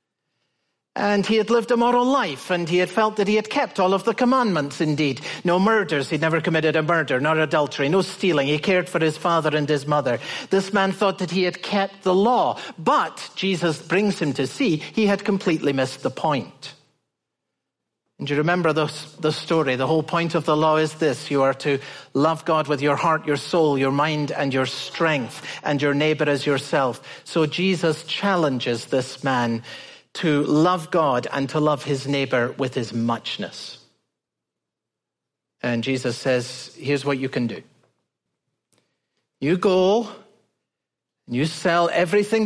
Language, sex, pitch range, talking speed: English, male, 145-195 Hz, 175 wpm